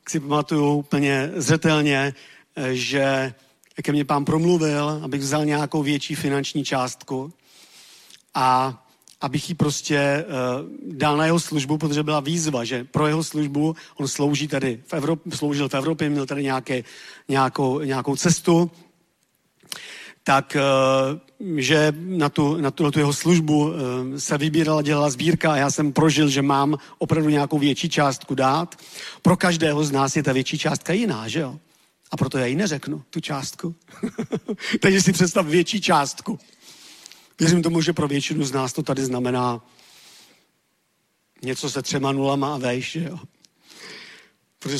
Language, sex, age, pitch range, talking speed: Czech, male, 40-59, 135-160 Hz, 150 wpm